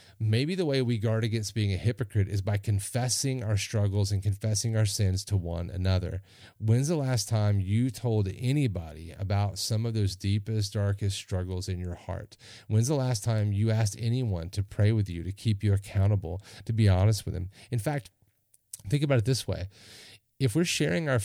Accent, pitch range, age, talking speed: American, 100-115 Hz, 30-49, 195 wpm